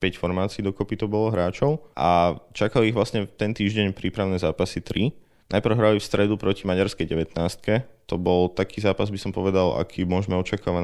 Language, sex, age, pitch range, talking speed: Slovak, male, 20-39, 90-105 Hz, 175 wpm